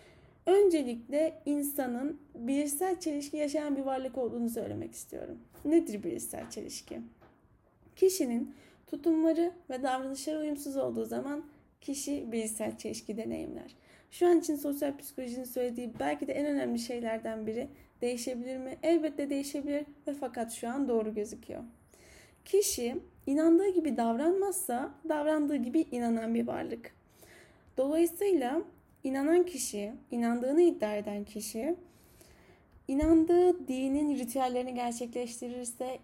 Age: 10-29